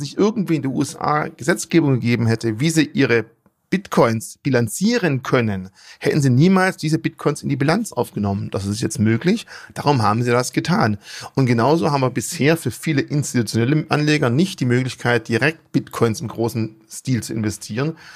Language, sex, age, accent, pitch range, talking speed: German, male, 40-59, German, 120-160 Hz, 170 wpm